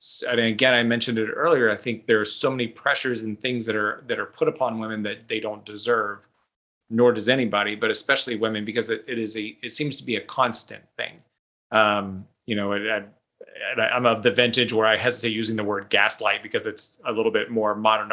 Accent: American